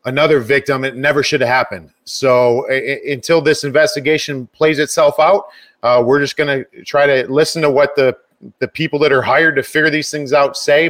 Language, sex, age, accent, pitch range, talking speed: English, male, 30-49, American, 130-155 Hz, 205 wpm